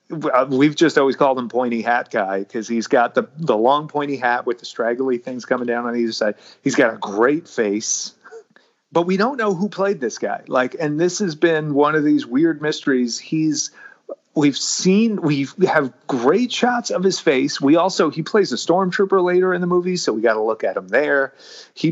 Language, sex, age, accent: English, male, 30-49, American